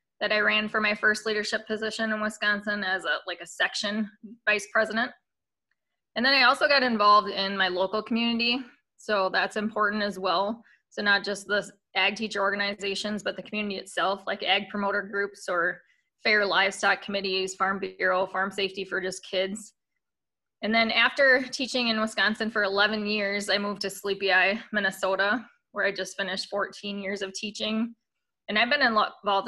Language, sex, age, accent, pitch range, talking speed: English, female, 20-39, American, 195-215 Hz, 175 wpm